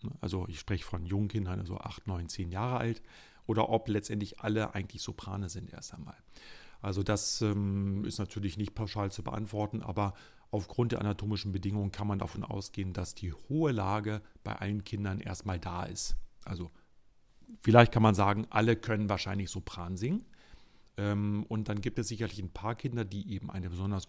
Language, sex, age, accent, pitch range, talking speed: German, male, 40-59, German, 95-115 Hz, 180 wpm